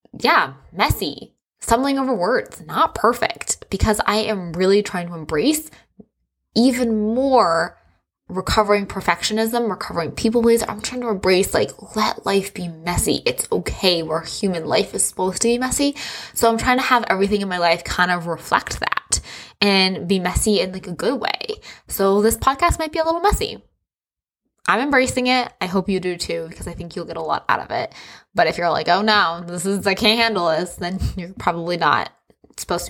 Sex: female